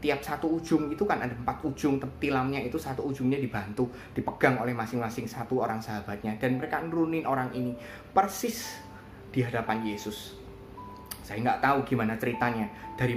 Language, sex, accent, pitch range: Indonesian, male, native, 110-140 Hz